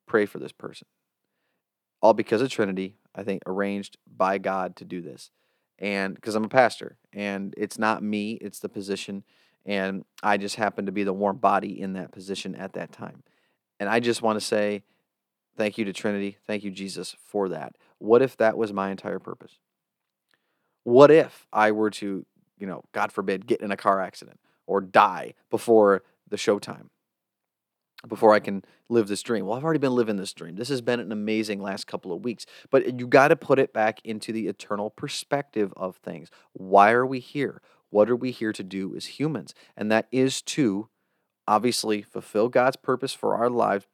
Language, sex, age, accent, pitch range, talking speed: English, male, 30-49, American, 100-115 Hz, 195 wpm